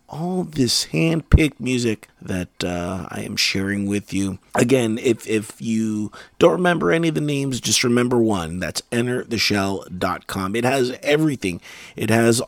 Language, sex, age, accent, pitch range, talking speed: English, male, 30-49, American, 100-130 Hz, 150 wpm